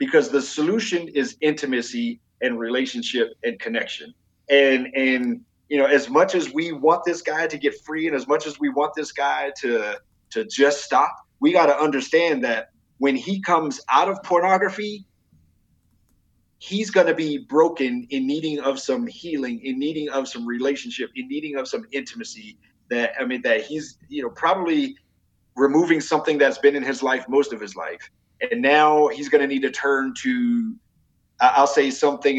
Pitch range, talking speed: 135-225 Hz, 180 wpm